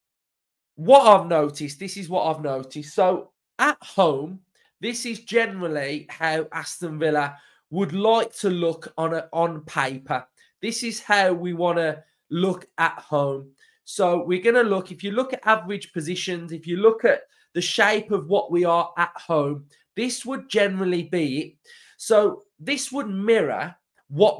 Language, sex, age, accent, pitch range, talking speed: English, male, 20-39, British, 160-210 Hz, 160 wpm